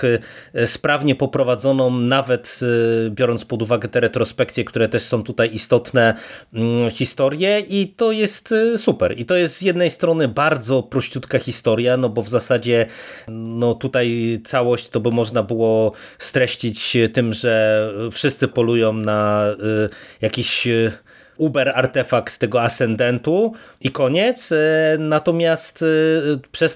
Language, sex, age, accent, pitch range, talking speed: Polish, male, 30-49, native, 115-140 Hz, 115 wpm